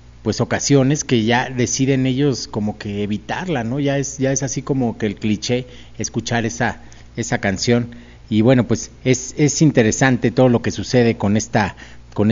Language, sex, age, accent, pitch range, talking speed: Spanish, male, 40-59, Mexican, 110-130 Hz, 175 wpm